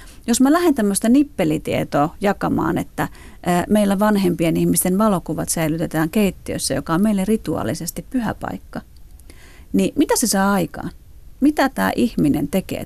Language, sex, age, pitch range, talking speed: Finnish, female, 40-59, 165-230 Hz, 130 wpm